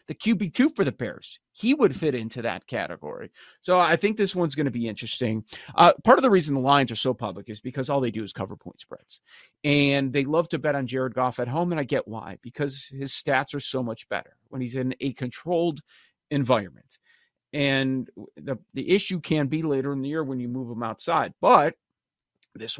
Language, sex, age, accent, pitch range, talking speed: English, male, 30-49, American, 115-150 Hz, 220 wpm